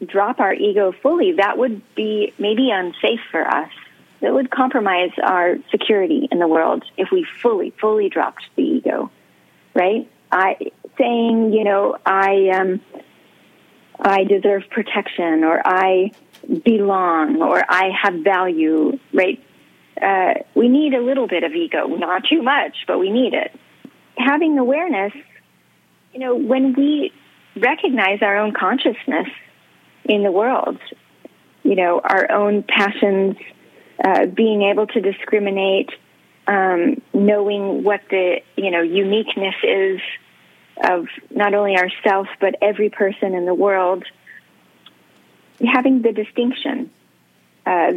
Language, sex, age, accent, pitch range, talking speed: English, female, 30-49, American, 190-260 Hz, 130 wpm